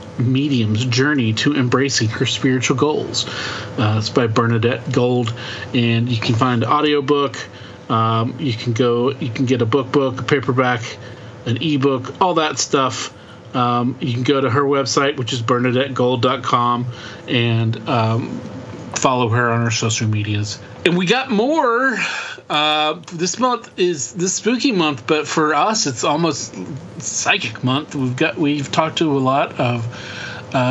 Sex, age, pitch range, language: male, 40-59, 120-145 Hz, English